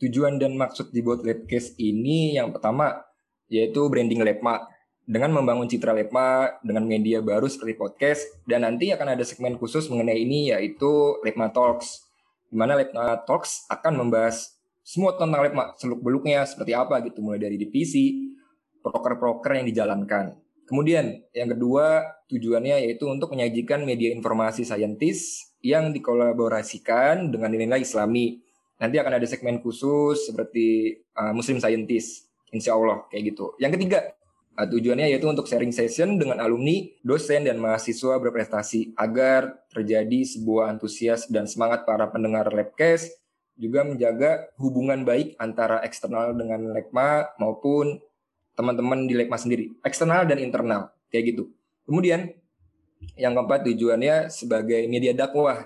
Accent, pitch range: native, 110-145 Hz